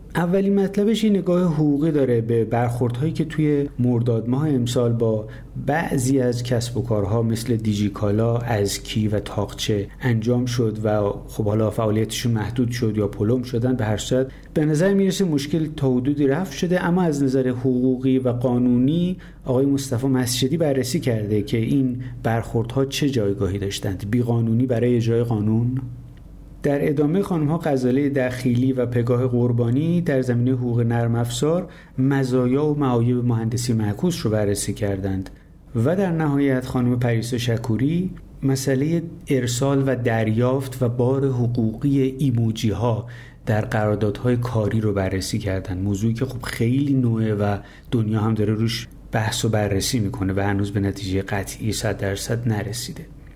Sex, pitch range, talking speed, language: male, 110-135 Hz, 150 wpm, Persian